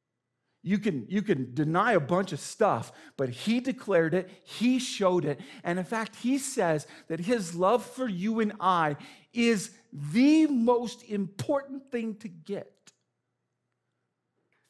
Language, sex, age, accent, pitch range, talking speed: English, male, 40-59, American, 135-200 Hz, 145 wpm